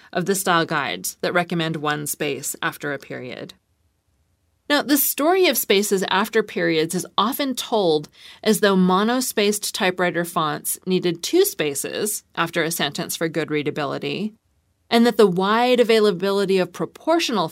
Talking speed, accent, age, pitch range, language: 145 wpm, American, 30-49, 165-220 Hz, English